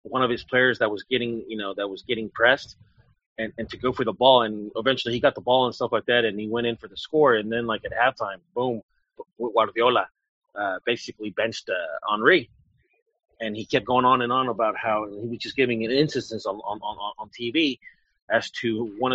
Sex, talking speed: male, 225 wpm